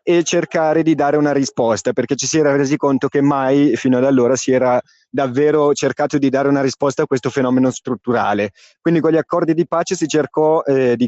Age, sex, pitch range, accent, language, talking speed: 30-49, male, 125-150 Hz, native, Italian, 210 wpm